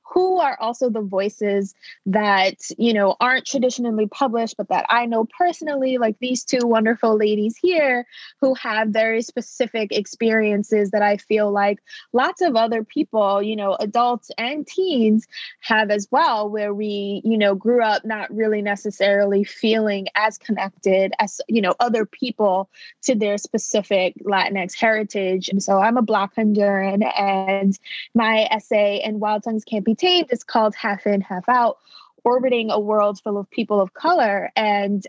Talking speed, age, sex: 160 wpm, 20-39, female